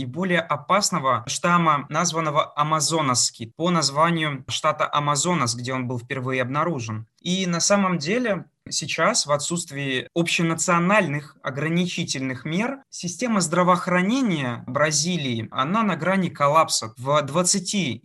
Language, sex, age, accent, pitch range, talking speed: Russian, male, 20-39, native, 140-185 Hz, 115 wpm